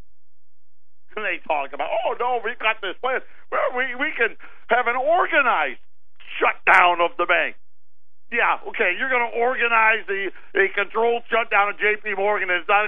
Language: English